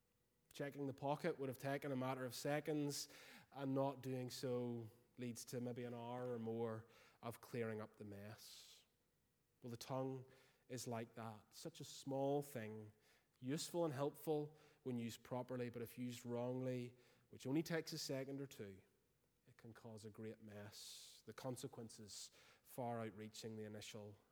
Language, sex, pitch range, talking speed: English, male, 115-140 Hz, 160 wpm